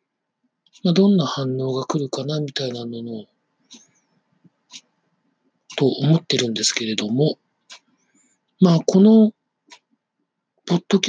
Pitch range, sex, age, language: 130-190 Hz, male, 40-59, Japanese